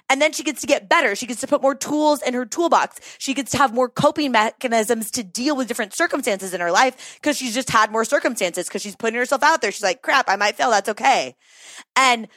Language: English